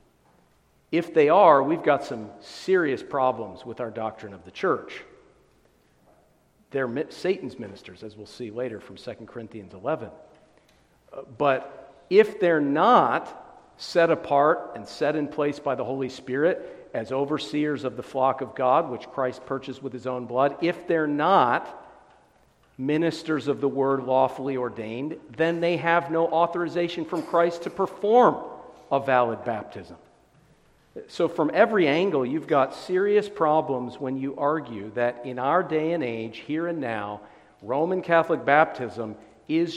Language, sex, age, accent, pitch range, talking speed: English, male, 50-69, American, 125-165 Hz, 150 wpm